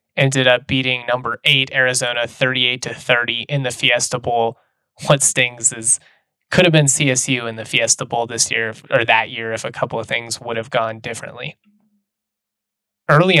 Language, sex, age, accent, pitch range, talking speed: English, male, 20-39, American, 125-145 Hz, 175 wpm